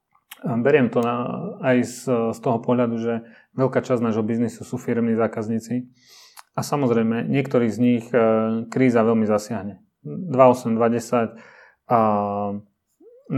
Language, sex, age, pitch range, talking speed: Czech, male, 30-49, 110-130 Hz, 120 wpm